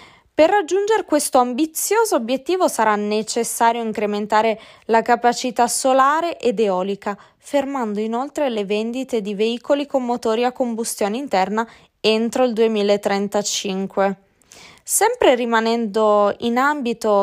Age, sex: 20-39, female